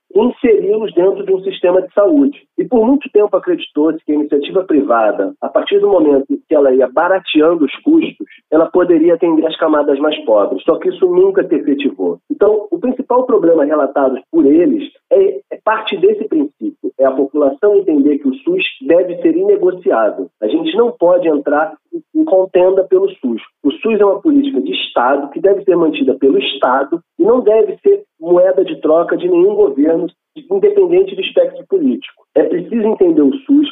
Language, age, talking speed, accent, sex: Portuguese, 40-59, 185 wpm, Brazilian, male